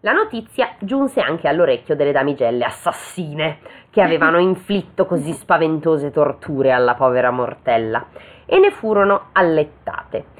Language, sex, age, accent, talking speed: Italian, female, 20-39, native, 120 wpm